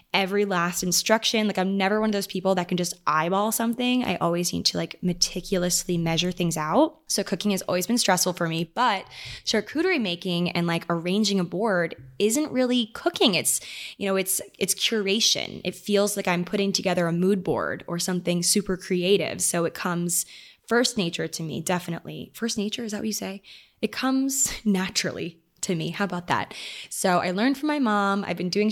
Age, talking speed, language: 20-39, 195 wpm, English